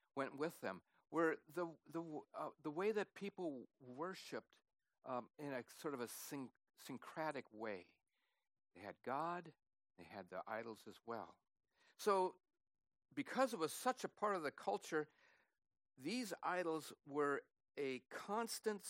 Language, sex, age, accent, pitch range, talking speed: English, male, 60-79, American, 135-210 Hz, 145 wpm